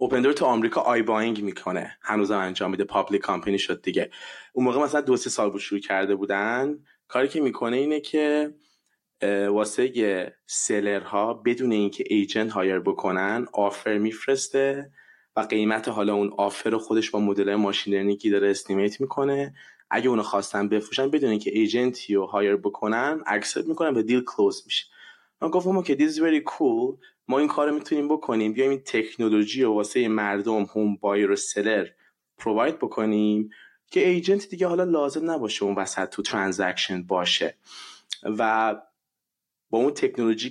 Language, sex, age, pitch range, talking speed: Persian, male, 20-39, 100-150 Hz, 155 wpm